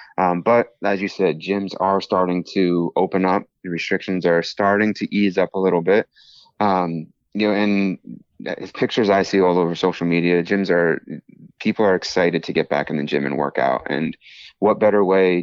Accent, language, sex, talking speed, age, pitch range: American, English, male, 195 wpm, 30-49, 85-100 Hz